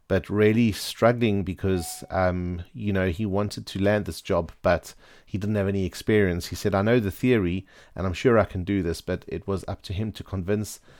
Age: 40-59